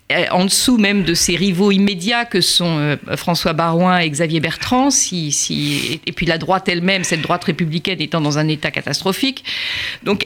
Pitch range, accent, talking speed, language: 170-235 Hz, French, 175 wpm, French